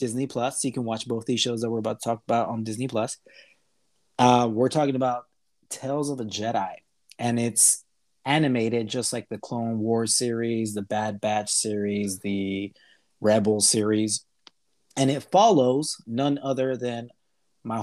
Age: 30-49